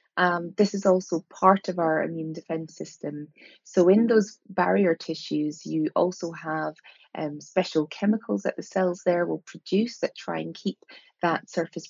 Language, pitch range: English, 155-185 Hz